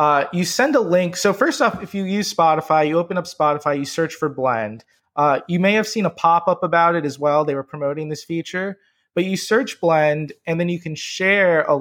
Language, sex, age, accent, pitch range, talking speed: English, male, 20-39, American, 150-185 Hz, 240 wpm